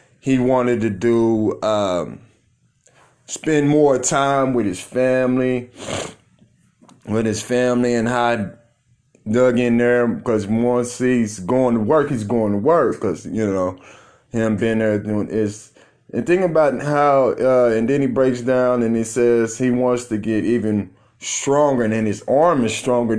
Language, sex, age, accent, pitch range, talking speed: English, male, 20-39, American, 120-140 Hz, 165 wpm